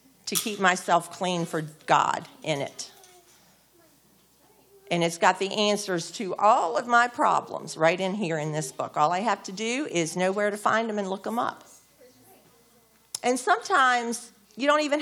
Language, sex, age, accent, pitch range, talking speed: English, female, 40-59, American, 175-225 Hz, 175 wpm